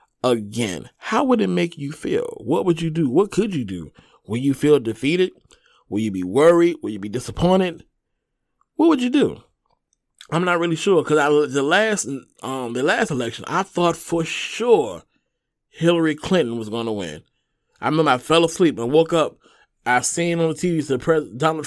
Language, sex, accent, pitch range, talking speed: English, male, American, 120-165 Hz, 190 wpm